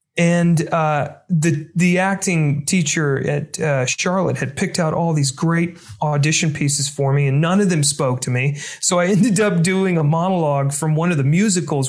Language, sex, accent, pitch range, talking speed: English, male, American, 145-175 Hz, 190 wpm